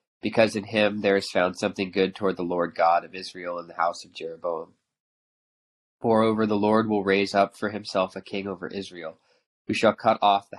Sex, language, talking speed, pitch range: male, English, 205 wpm, 90-105 Hz